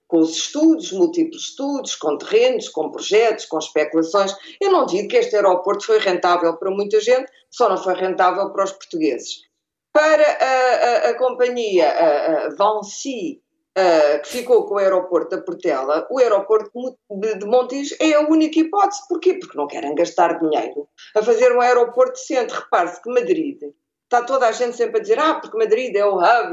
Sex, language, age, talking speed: female, Portuguese, 50-69, 175 wpm